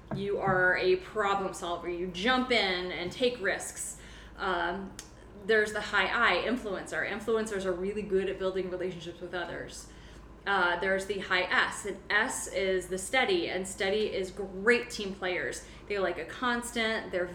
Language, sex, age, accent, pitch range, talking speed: English, female, 30-49, American, 185-220 Hz, 165 wpm